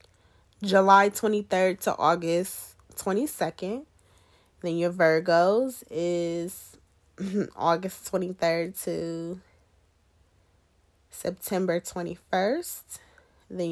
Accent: American